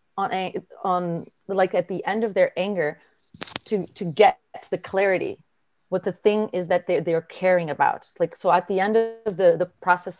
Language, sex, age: English, female, 30-49